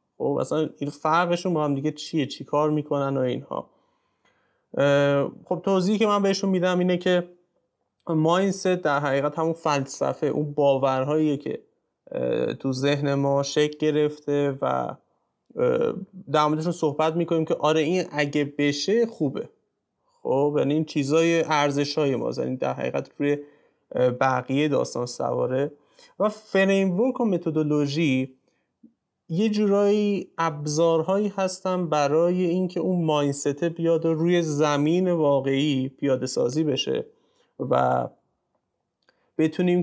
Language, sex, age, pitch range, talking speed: Persian, male, 30-49, 145-185 Hz, 120 wpm